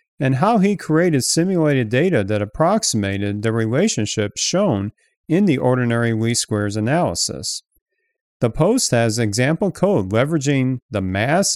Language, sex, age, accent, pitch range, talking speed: English, male, 40-59, American, 105-160 Hz, 130 wpm